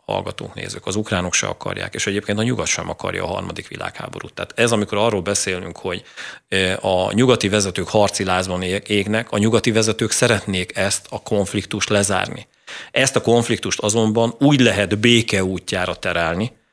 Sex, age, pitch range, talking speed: male, 40-59, 100-115 Hz, 150 wpm